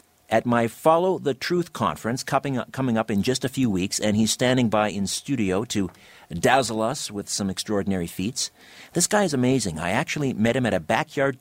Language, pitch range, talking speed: English, 105-140 Hz, 195 wpm